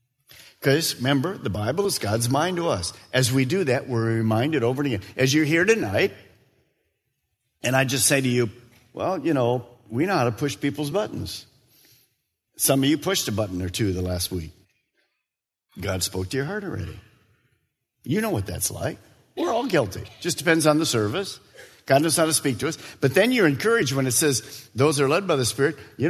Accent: American